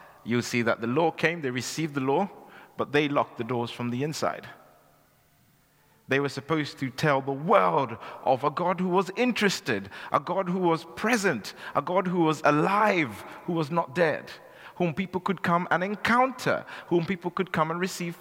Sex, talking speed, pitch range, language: male, 190 wpm, 125-170 Hz, English